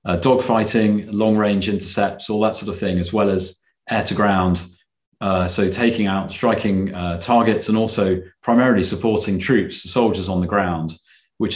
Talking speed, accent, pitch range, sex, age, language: 155 wpm, British, 95-105 Hz, male, 30-49, English